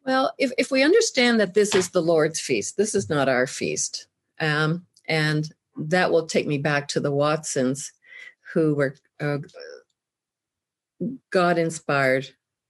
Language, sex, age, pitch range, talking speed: English, female, 50-69, 140-180 Hz, 140 wpm